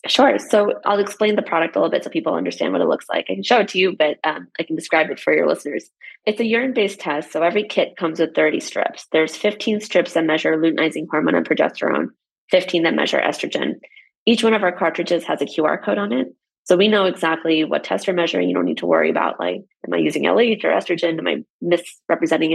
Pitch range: 160-210 Hz